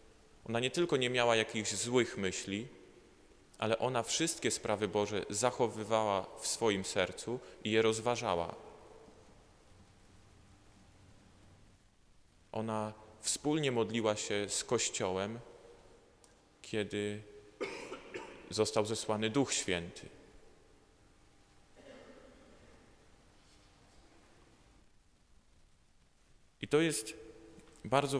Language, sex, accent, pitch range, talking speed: Polish, male, native, 100-125 Hz, 75 wpm